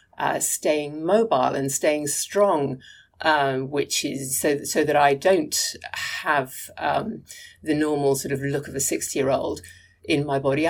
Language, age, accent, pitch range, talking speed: English, 50-69, British, 145-210 Hz, 165 wpm